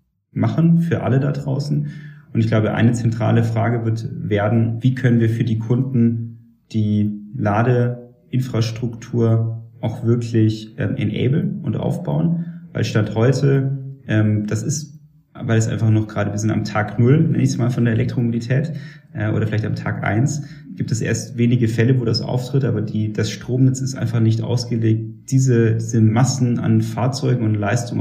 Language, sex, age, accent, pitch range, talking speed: German, male, 30-49, German, 110-135 Hz, 170 wpm